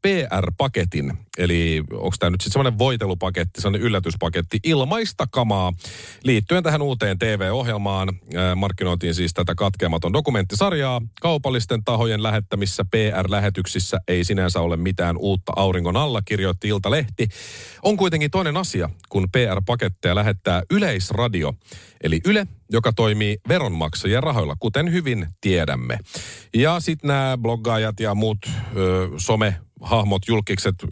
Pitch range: 95-125 Hz